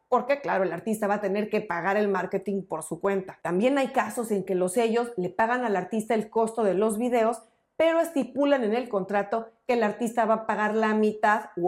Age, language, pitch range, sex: 40-59, Spanish, 195-265 Hz, female